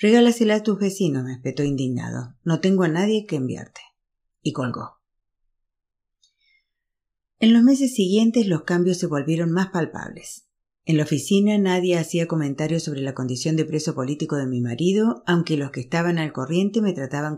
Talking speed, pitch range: 165 wpm, 145-195 Hz